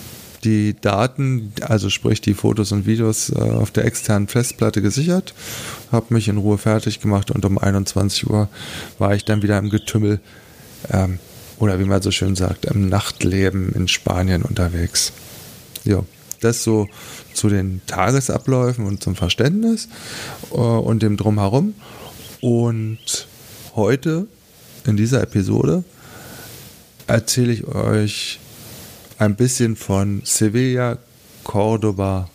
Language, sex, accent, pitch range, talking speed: German, male, German, 100-120 Hz, 120 wpm